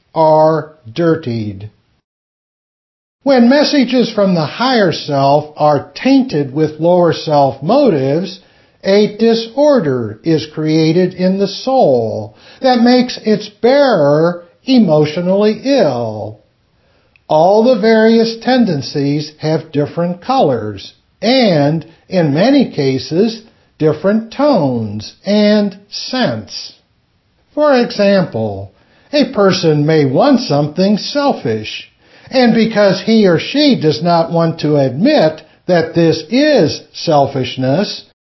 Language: English